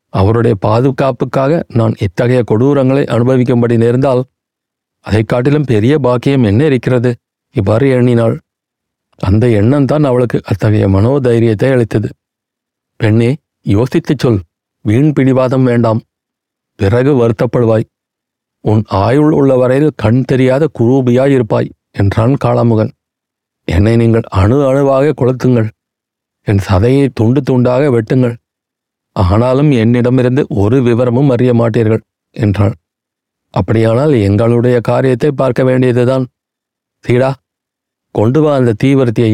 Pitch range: 110-130 Hz